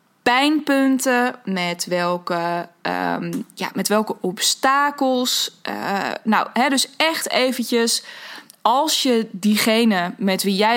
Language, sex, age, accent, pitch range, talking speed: Dutch, female, 20-39, Dutch, 195-245 Hz, 110 wpm